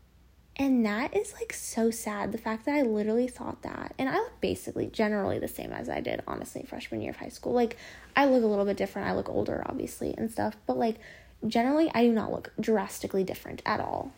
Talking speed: 225 wpm